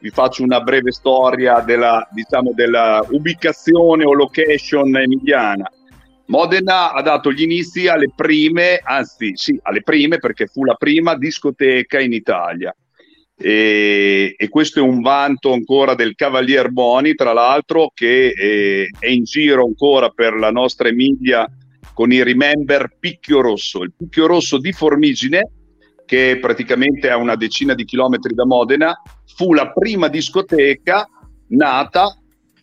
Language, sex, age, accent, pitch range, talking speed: Italian, male, 50-69, native, 125-170 Hz, 140 wpm